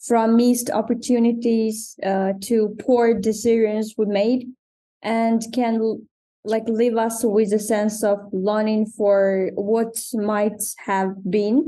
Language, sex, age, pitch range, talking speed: English, female, 20-39, 205-240 Hz, 125 wpm